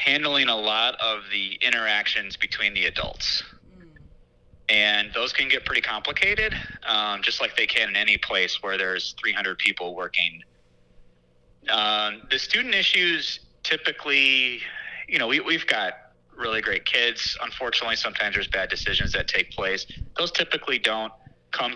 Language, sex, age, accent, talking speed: English, male, 30-49, American, 145 wpm